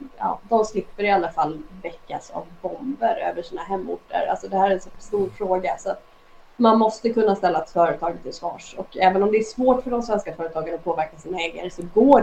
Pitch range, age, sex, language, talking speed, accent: 185-225 Hz, 20-39, female, Swedish, 220 wpm, native